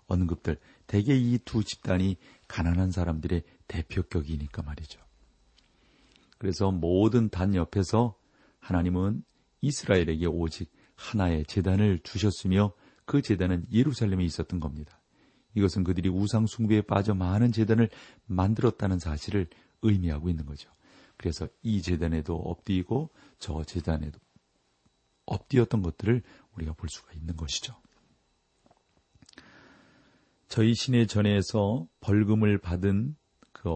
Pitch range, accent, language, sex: 85-110 Hz, native, Korean, male